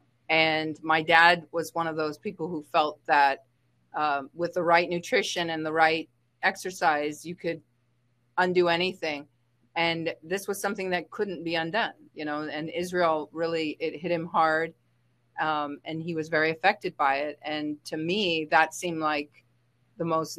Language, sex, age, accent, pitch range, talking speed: English, female, 40-59, American, 145-165 Hz, 170 wpm